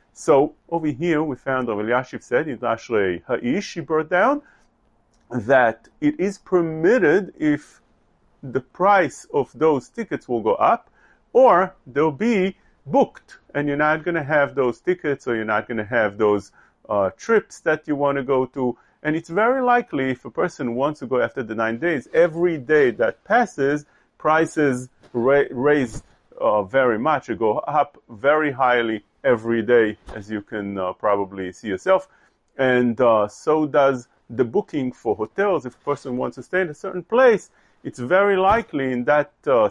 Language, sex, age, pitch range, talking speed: English, male, 40-59, 125-180 Hz, 175 wpm